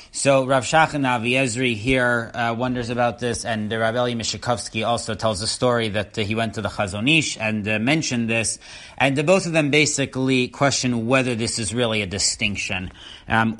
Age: 30-49